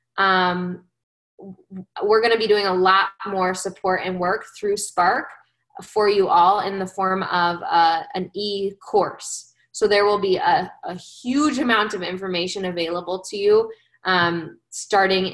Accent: American